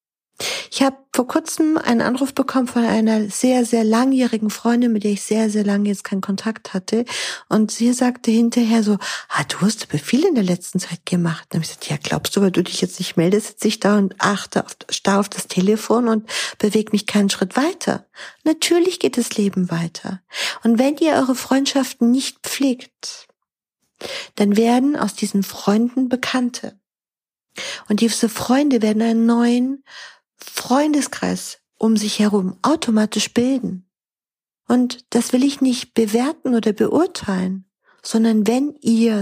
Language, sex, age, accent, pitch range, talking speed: German, female, 50-69, German, 200-245 Hz, 165 wpm